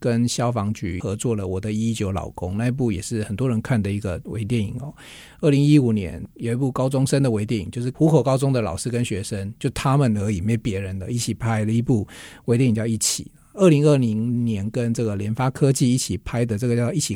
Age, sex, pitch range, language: 50-69, male, 105-140 Hz, Chinese